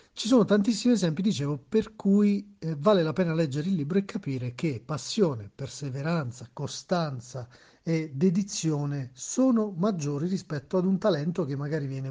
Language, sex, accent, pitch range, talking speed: Italian, male, native, 145-195 Hz, 155 wpm